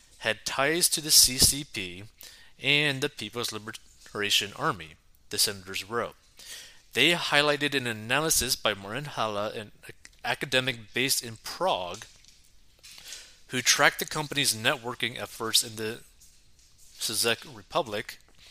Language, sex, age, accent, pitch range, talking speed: English, male, 30-49, American, 110-145 Hz, 115 wpm